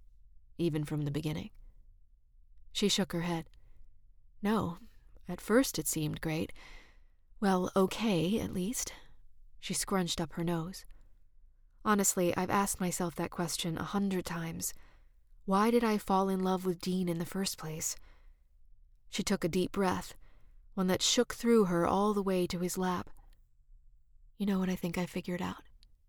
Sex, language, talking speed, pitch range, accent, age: female, English, 155 wpm, 160-195 Hz, American, 30-49